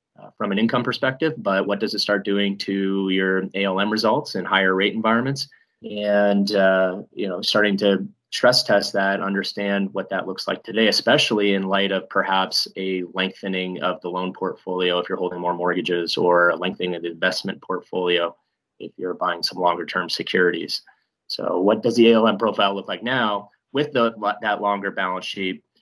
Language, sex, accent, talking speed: English, male, American, 185 wpm